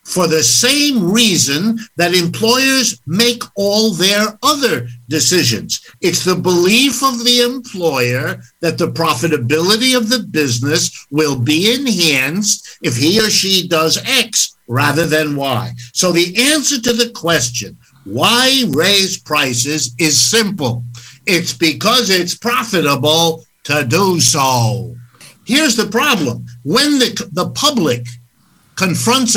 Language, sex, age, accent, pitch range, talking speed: English, male, 50-69, American, 145-215 Hz, 125 wpm